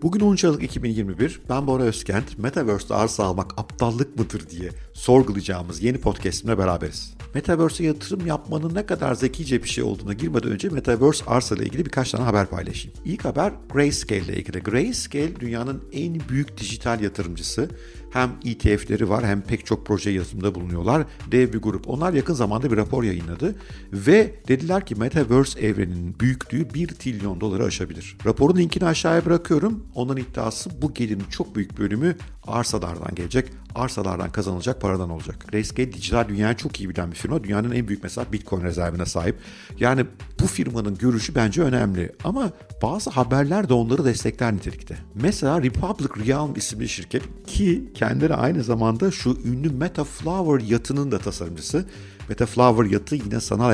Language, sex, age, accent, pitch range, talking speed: Turkish, male, 50-69, native, 100-140 Hz, 155 wpm